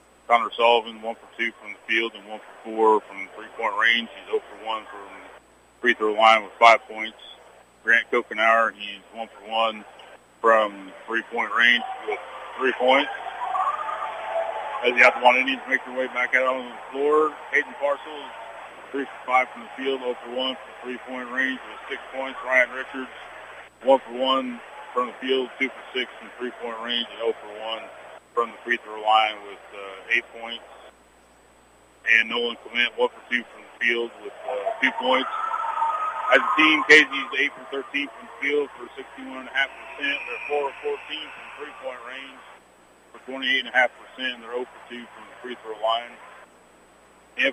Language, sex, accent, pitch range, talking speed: English, male, American, 110-135 Hz, 160 wpm